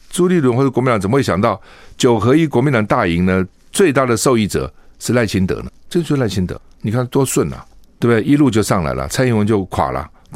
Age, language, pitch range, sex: 60-79, Chinese, 90-125 Hz, male